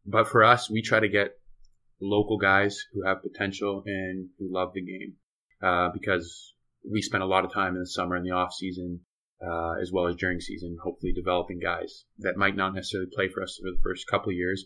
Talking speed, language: 220 wpm, English